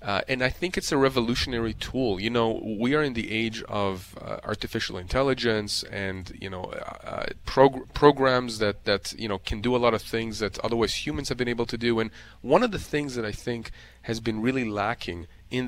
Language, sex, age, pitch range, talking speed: English, male, 30-49, 105-125 Hz, 215 wpm